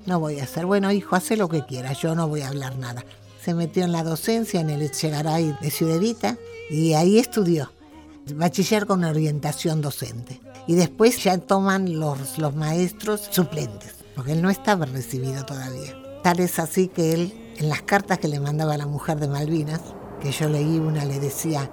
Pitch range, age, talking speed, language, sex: 140-185 Hz, 50-69, 190 wpm, Spanish, female